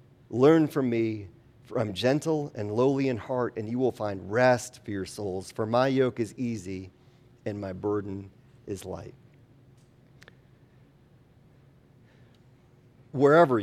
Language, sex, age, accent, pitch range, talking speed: English, male, 40-59, American, 105-125 Hz, 130 wpm